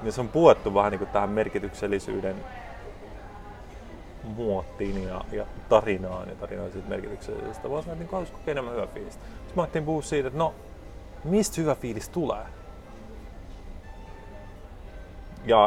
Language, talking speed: Finnish, 135 wpm